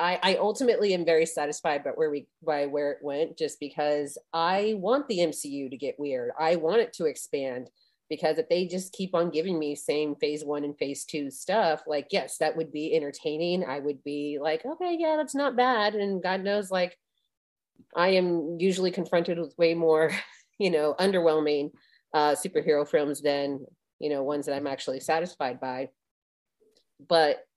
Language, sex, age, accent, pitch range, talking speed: English, female, 30-49, American, 145-180 Hz, 175 wpm